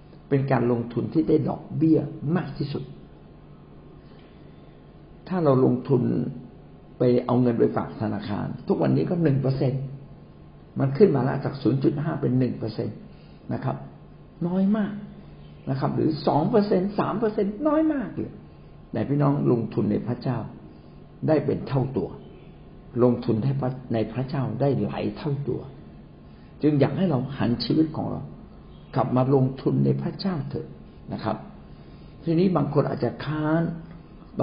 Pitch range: 125-170 Hz